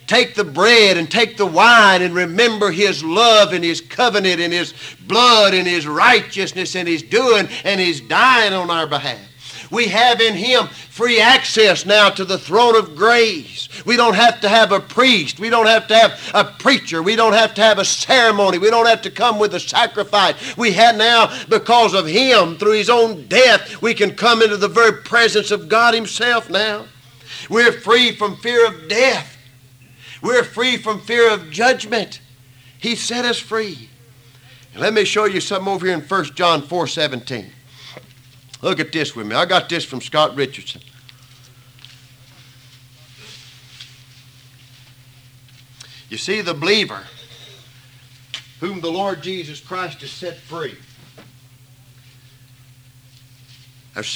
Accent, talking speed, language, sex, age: American, 160 wpm, English, male, 50-69